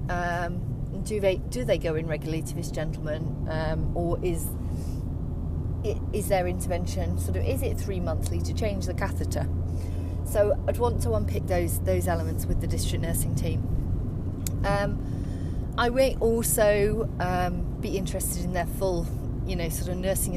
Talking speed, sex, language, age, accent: 160 wpm, female, English, 30-49, British